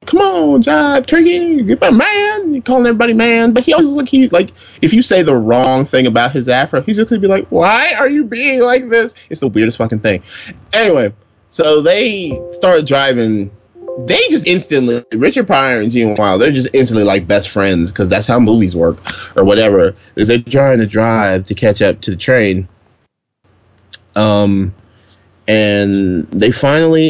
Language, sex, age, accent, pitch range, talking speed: English, male, 20-39, American, 100-130 Hz, 185 wpm